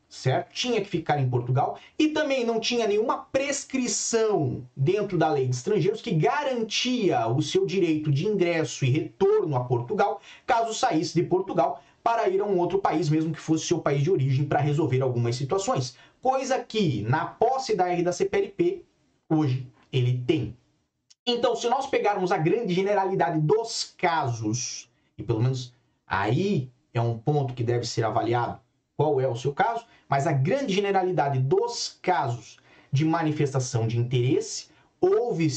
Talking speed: 160 wpm